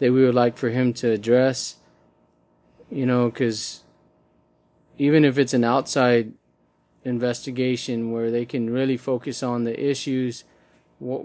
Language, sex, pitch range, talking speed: English, male, 125-145 Hz, 140 wpm